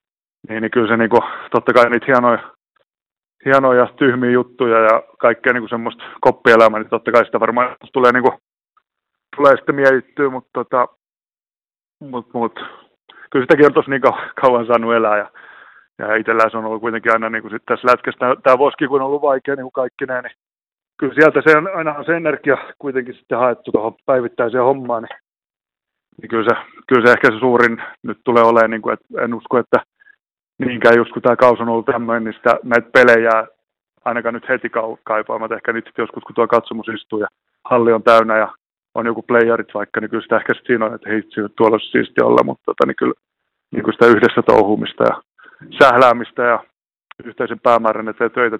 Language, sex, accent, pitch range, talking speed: Finnish, male, native, 110-130 Hz, 195 wpm